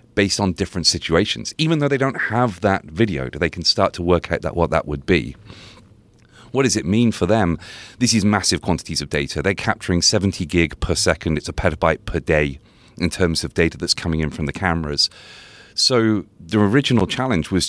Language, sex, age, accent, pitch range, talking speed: English, male, 30-49, British, 85-110 Hz, 205 wpm